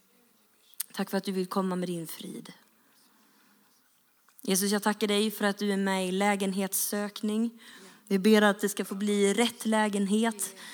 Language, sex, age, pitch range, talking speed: Swedish, female, 20-39, 195-220 Hz, 160 wpm